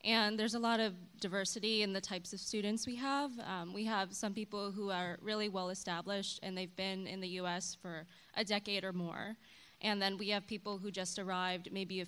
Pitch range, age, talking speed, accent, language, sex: 190-215 Hz, 20-39, 215 wpm, American, English, female